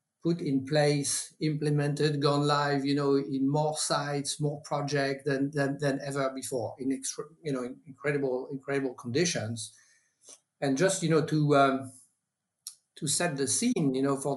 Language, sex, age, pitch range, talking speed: English, male, 50-69, 135-150 Hz, 165 wpm